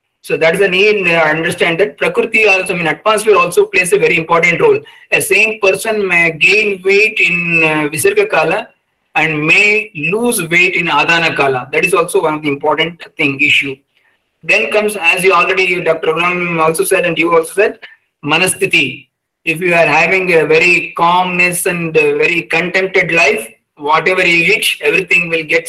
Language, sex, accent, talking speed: English, male, Indian, 180 wpm